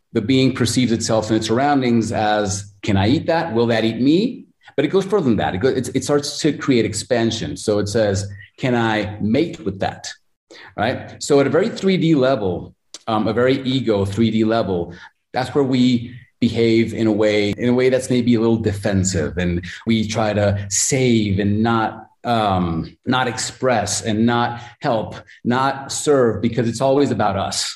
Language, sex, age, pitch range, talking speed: English, male, 30-49, 100-125 Hz, 185 wpm